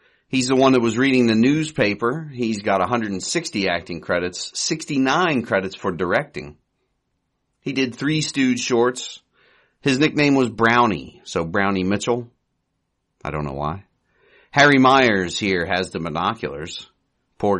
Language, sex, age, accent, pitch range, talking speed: English, male, 40-59, American, 95-130 Hz, 135 wpm